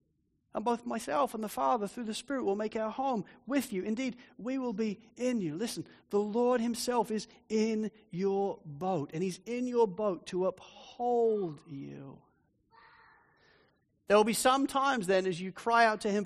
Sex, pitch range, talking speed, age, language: male, 190-250 Hz, 180 wpm, 40-59, English